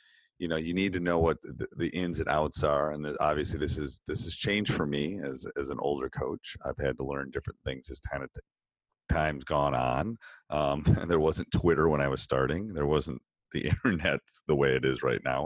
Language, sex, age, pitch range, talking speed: English, male, 40-59, 70-90 Hz, 215 wpm